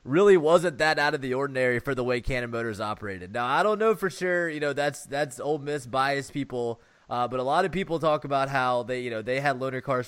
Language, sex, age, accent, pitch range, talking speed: English, male, 20-39, American, 120-150 Hz, 255 wpm